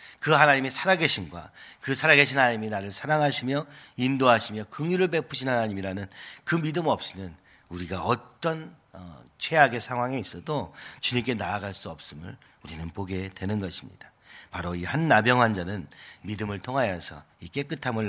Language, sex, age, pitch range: Korean, male, 40-59, 100-135 Hz